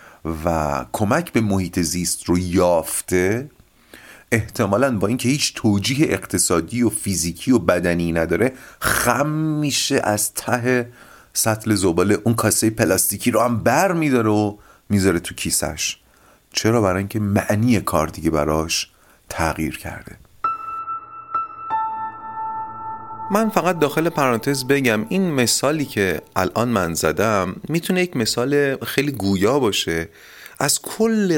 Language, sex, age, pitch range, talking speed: Persian, male, 30-49, 95-145 Hz, 120 wpm